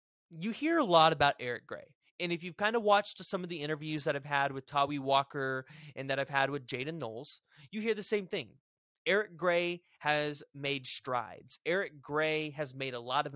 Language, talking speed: English, 210 wpm